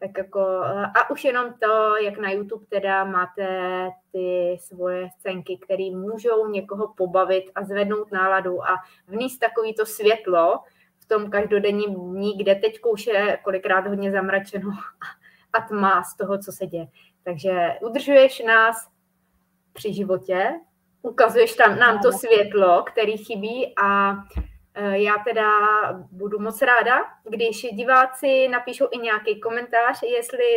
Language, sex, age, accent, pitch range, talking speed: Czech, female, 20-39, native, 190-225 Hz, 135 wpm